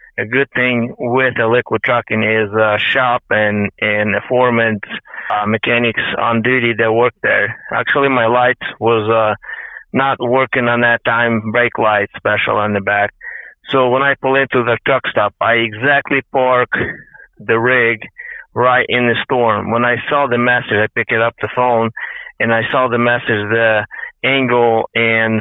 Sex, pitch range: male, 115-130 Hz